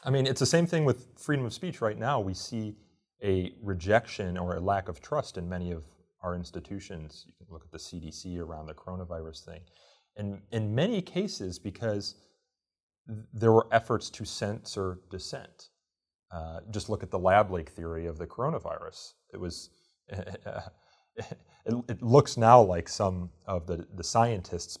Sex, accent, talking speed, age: male, American, 165 wpm, 30-49